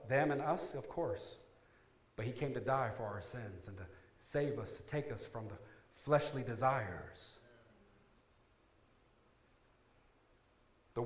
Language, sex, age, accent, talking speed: English, male, 50-69, American, 135 wpm